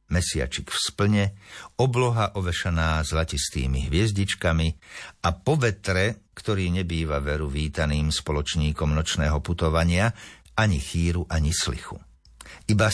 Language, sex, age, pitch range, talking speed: Slovak, male, 60-79, 80-105 Hz, 100 wpm